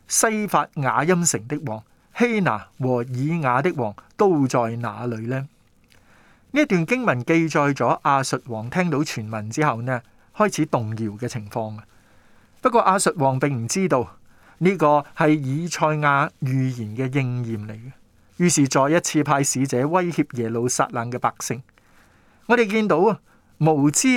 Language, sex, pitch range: Chinese, male, 120-160 Hz